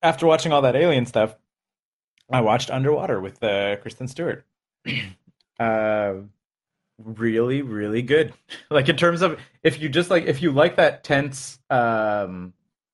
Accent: American